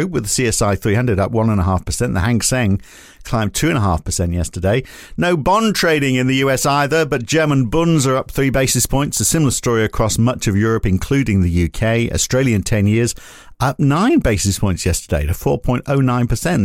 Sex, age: male, 50-69